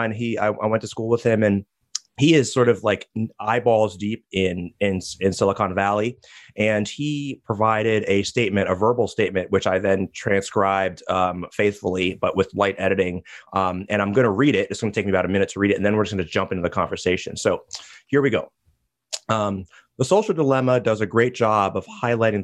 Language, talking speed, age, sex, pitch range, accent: English, 215 wpm, 30-49, male, 95-115 Hz, American